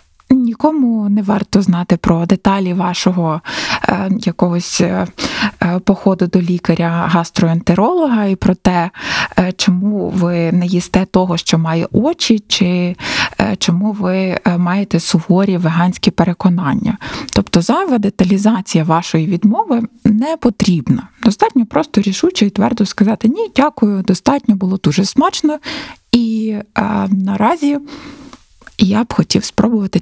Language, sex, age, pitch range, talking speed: Ukrainian, female, 20-39, 200-245 Hz, 120 wpm